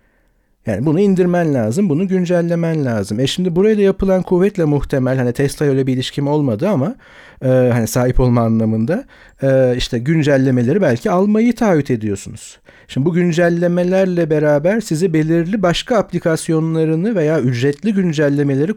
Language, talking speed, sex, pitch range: Turkish, 140 wpm, male, 125-180 Hz